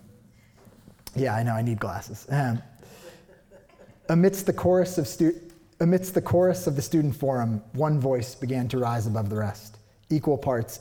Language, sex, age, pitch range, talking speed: English, male, 30-49, 110-140 Hz, 160 wpm